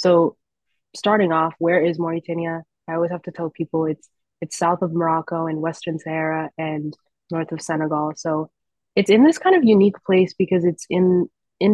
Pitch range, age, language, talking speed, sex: 155-180 Hz, 20-39, English, 185 wpm, female